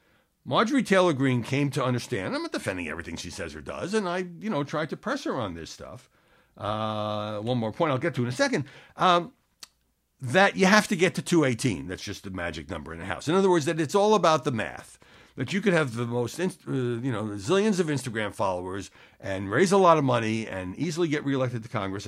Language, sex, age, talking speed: English, male, 60-79, 225 wpm